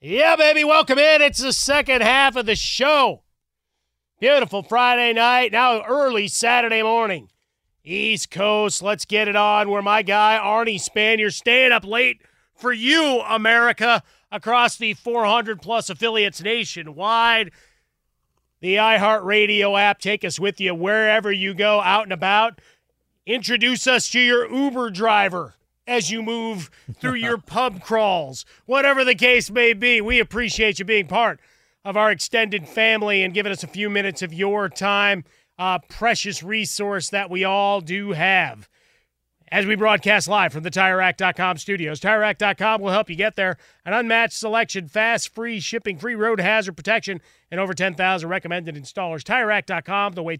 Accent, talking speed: American, 155 wpm